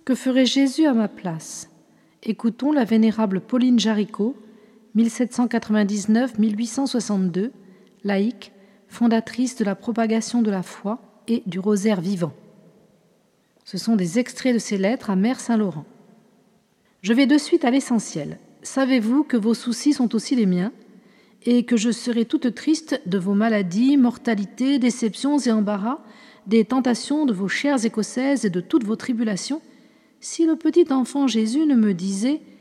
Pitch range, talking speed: 210-260 Hz, 145 wpm